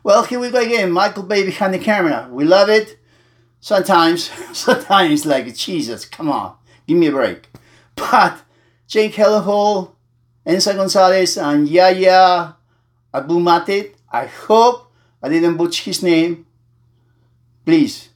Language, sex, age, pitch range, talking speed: English, male, 50-69, 140-210 Hz, 130 wpm